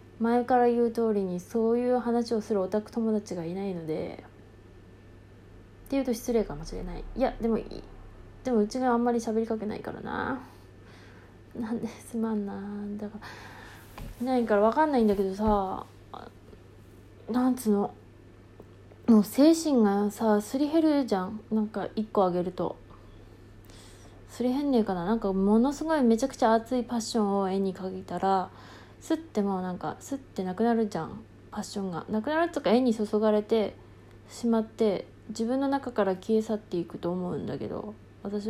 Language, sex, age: Japanese, female, 20-39